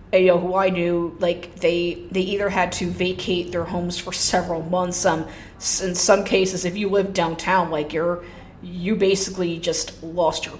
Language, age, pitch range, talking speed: English, 20-39, 175-195 Hz, 185 wpm